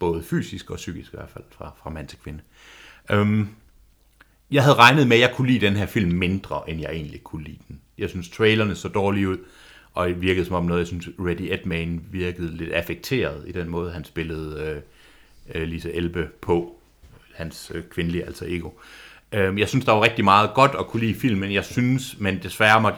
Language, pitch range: Danish, 90-115 Hz